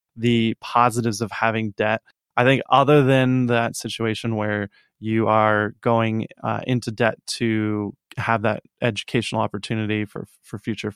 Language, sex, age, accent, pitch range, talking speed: English, male, 20-39, American, 110-125 Hz, 140 wpm